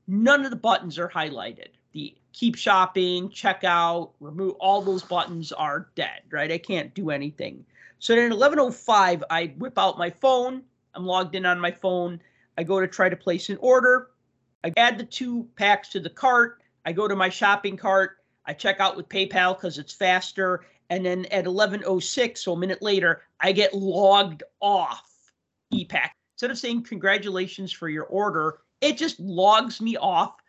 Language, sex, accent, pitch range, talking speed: English, male, American, 180-215 Hz, 180 wpm